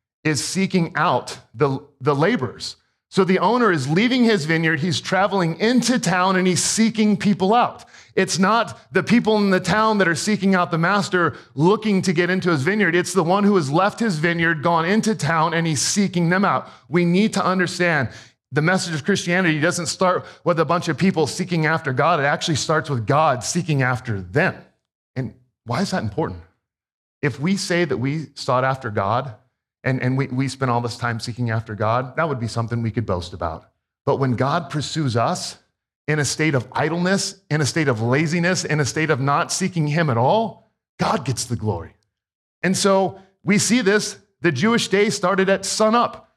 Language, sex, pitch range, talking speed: English, male, 140-195 Hz, 200 wpm